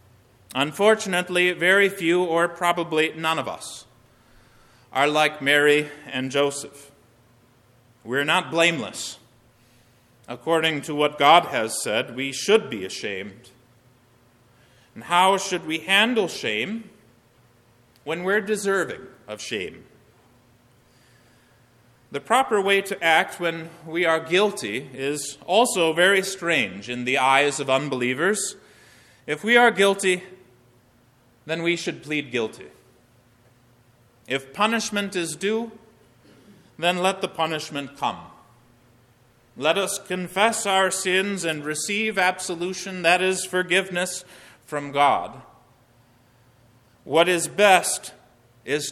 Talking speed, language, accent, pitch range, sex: 110 wpm, English, American, 120-180 Hz, male